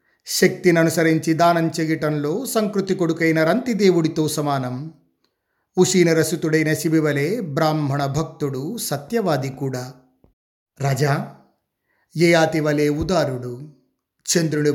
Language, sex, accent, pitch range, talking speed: Telugu, male, native, 135-170 Hz, 80 wpm